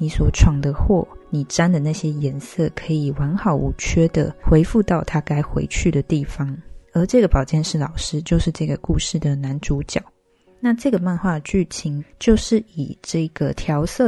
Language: Chinese